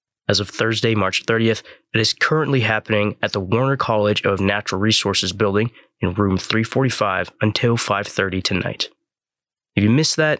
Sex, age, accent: male, 20-39, American